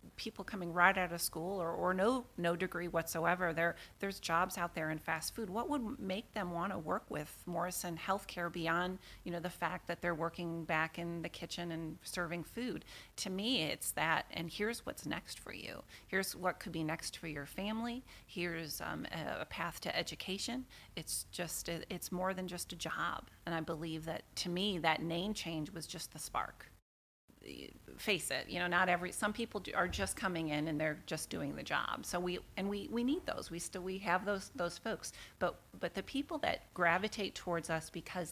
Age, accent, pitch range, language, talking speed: 40-59, American, 160-185 Hz, English, 205 wpm